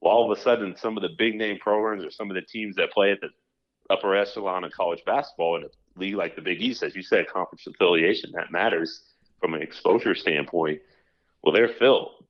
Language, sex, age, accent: English, male, 40-59, American